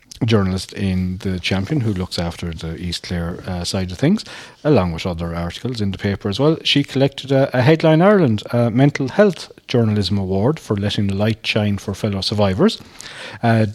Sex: male